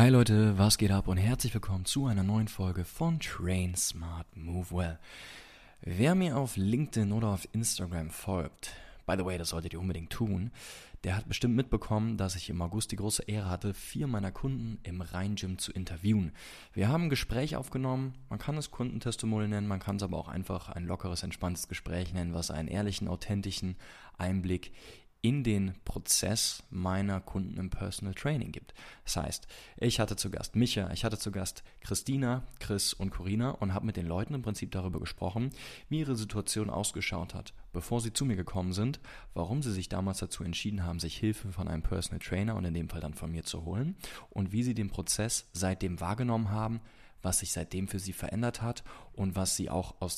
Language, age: German, 20-39